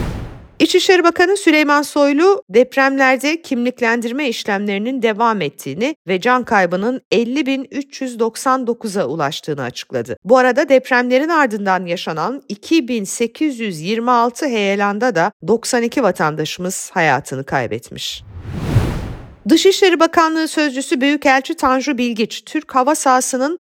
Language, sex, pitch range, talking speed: Turkish, female, 200-270 Hz, 90 wpm